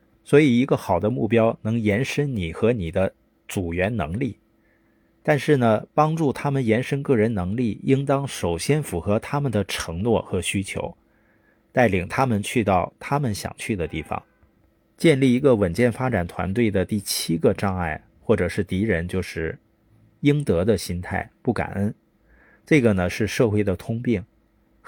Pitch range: 95-130 Hz